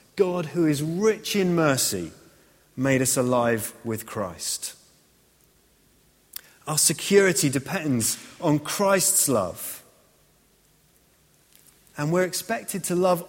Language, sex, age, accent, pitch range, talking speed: English, male, 30-49, British, 135-180 Hz, 100 wpm